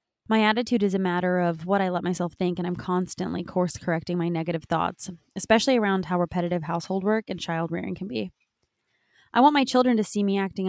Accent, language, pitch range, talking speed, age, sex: American, English, 170-195 Hz, 215 wpm, 20-39, female